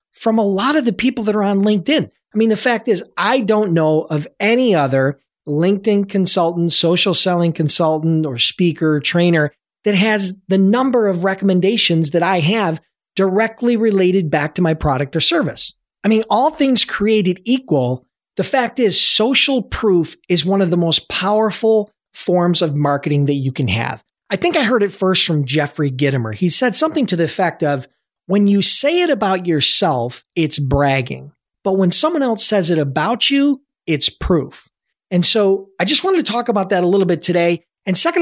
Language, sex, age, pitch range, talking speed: English, male, 40-59, 150-215 Hz, 185 wpm